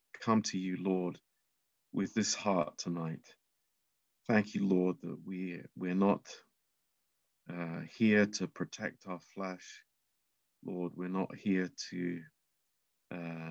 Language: Romanian